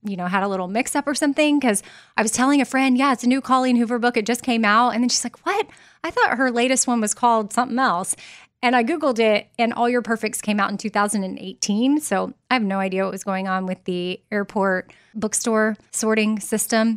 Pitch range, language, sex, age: 190-240 Hz, English, female, 20-39